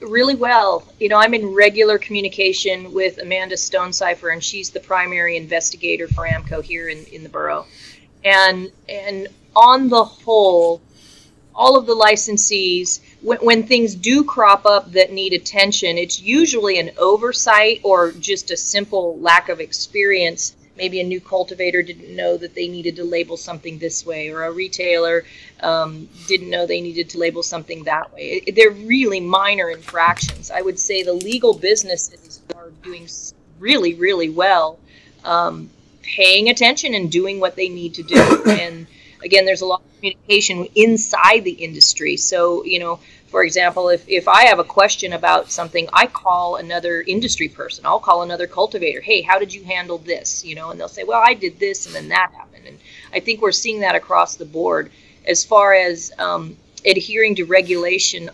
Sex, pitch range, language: female, 170-210 Hz, English